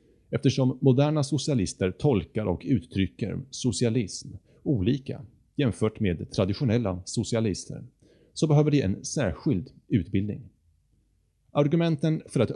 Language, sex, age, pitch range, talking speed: Swedish, male, 30-49, 95-135 Hz, 100 wpm